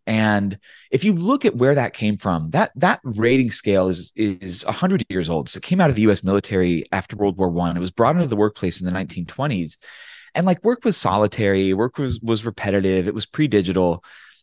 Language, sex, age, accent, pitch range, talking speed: English, male, 30-49, American, 95-130 Hz, 215 wpm